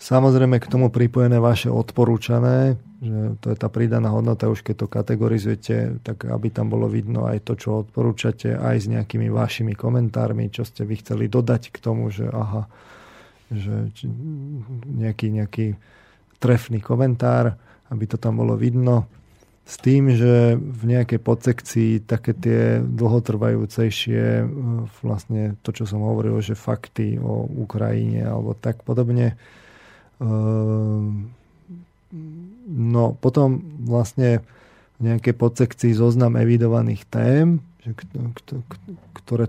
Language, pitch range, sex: Slovak, 110-120 Hz, male